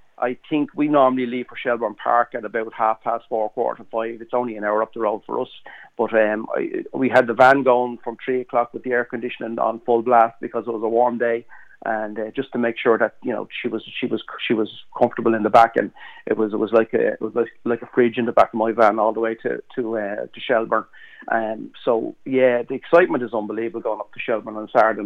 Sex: male